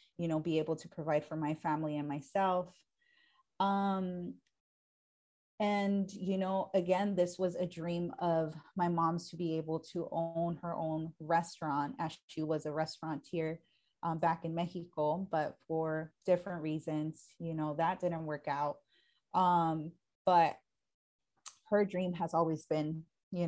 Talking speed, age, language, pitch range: 150 wpm, 20-39, English, 155-180 Hz